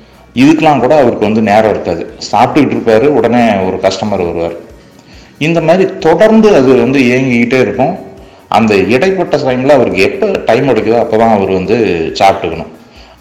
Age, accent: 30-49, native